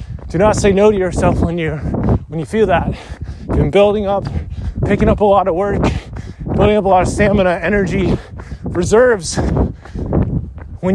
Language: English